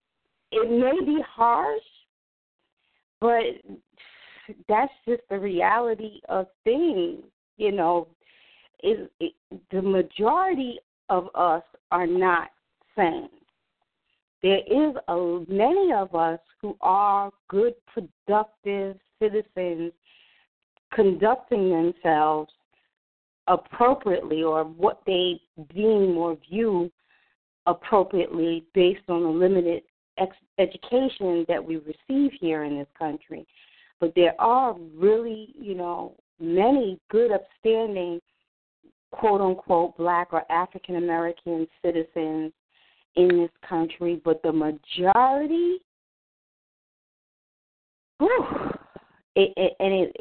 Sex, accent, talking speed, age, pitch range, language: female, American, 90 wpm, 40-59, 170-225 Hz, English